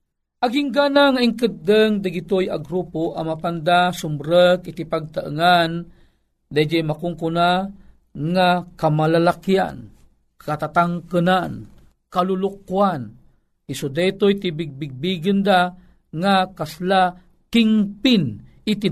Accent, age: native, 40-59